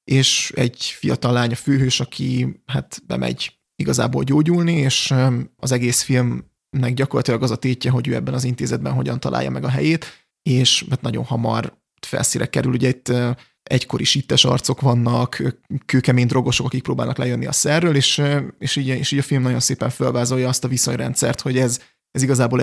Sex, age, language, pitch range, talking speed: male, 20-39, Hungarian, 125-140 Hz, 170 wpm